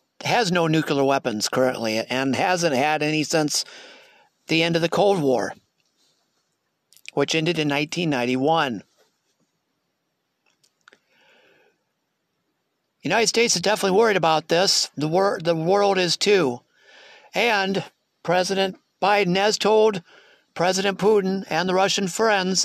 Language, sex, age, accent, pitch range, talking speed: English, male, 60-79, American, 155-215 Hz, 115 wpm